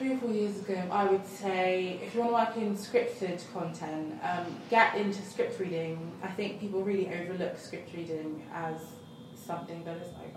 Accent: British